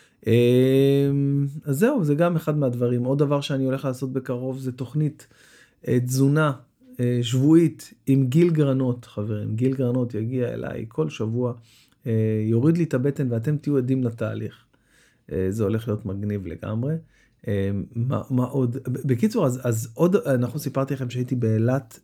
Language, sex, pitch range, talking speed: Hebrew, male, 115-145 Hz, 140 wpm